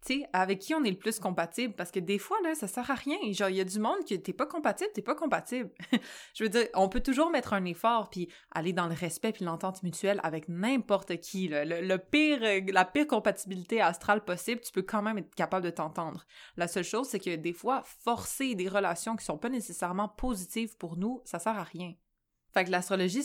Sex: female